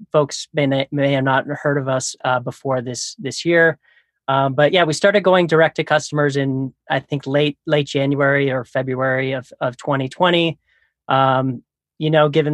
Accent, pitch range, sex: American, 135-155 Hz, male